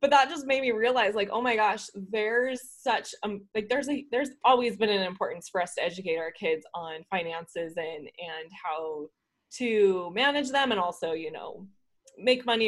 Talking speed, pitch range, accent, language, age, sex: 195 wpm, 195-250 Hz, American, English, 20-39, female